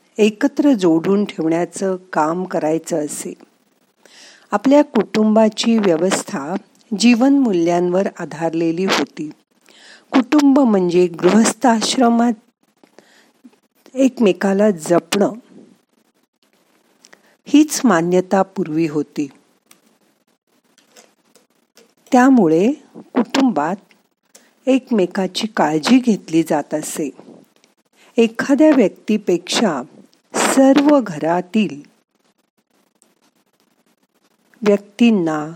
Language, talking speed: Marathi, 55 wpm